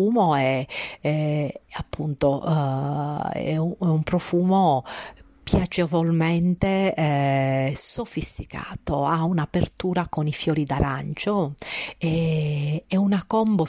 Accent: native